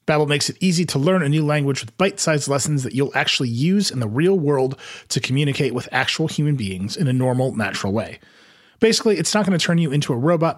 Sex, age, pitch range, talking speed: male, 30-49, 125-165 Hz, 235 wpm